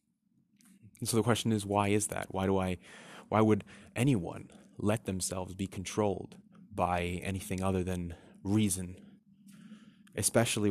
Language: English